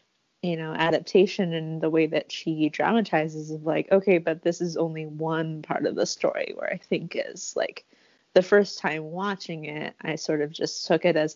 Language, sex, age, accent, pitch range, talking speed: English, female, 20-39, American, 160-255 Hz, 200 wpm